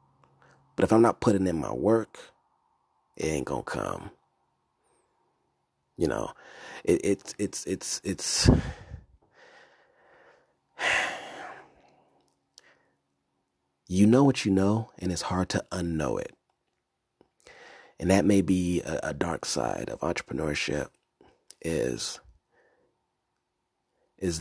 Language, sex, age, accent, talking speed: English, male, 30-49, American, 105 wpm